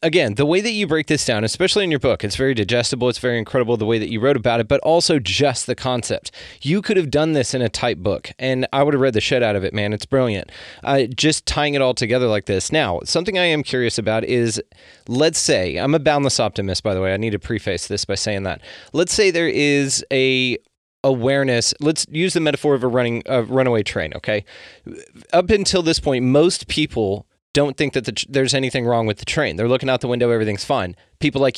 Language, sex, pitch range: English, male, 115-145 Hz